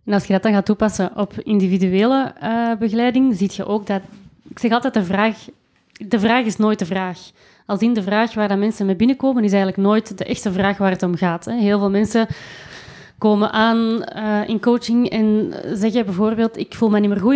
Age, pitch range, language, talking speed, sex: 30-49, 195-230 Hz, English, 215 wpm, female